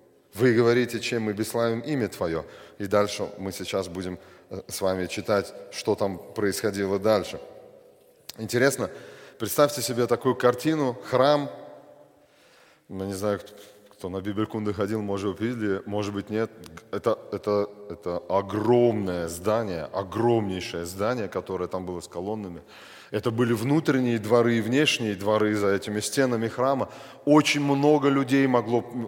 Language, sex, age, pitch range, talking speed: Russian, male, 20-39, 105-125 Hz, 130 wpm